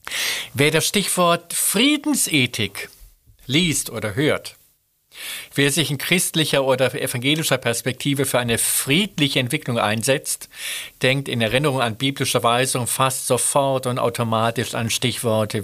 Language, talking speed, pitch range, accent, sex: German, 120 wpm, 120-165 Hz, German, male